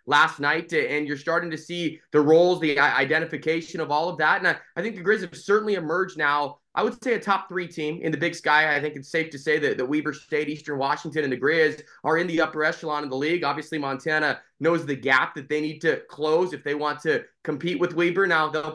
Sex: male